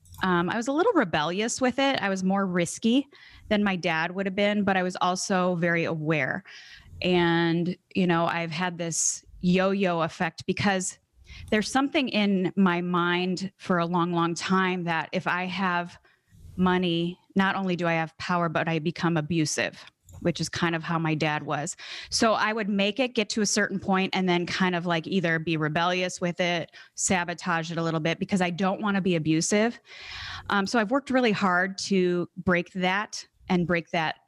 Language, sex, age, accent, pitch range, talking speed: English, female, 20-39, American, 165-190 Hz, 195 wpm